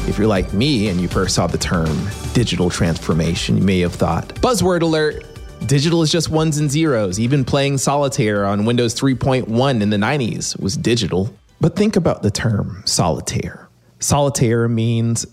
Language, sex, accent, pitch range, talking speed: English, male, American, 100-135 Hz, 170 wpm